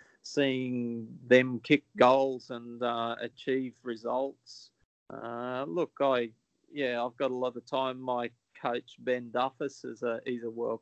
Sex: male